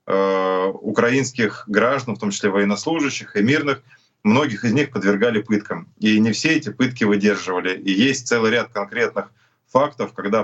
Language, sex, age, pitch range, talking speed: Russian, male, 20-39, 100-120 Hz, 150 wpm